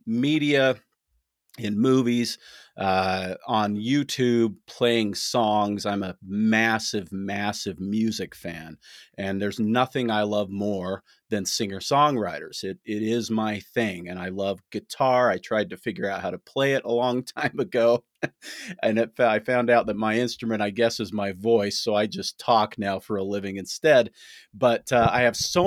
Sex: male